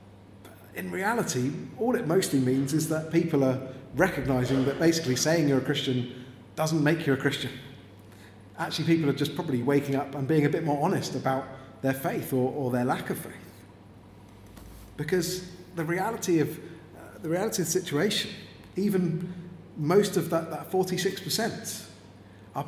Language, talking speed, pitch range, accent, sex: English, 160 wpm, 105-160 Hz, British, male